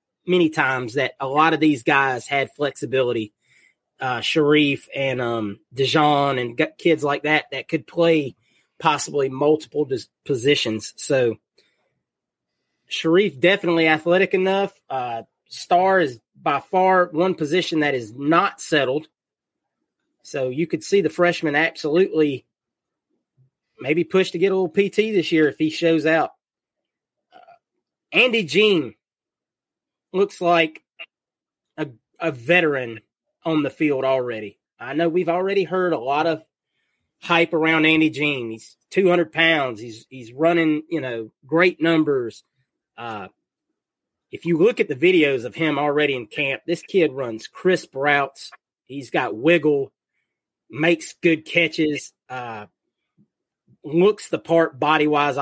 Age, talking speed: 30-49, 135 wpm